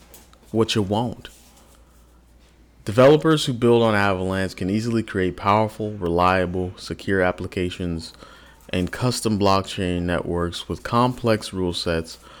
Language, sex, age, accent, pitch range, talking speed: English, male, 30-49, American, 80-105 Hz, 110 wpm